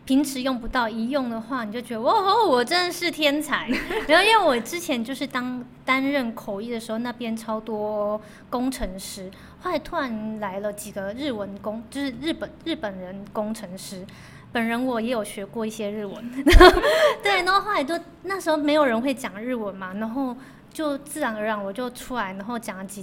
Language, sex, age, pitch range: Chinese, female, 20-39, 220-290 Hz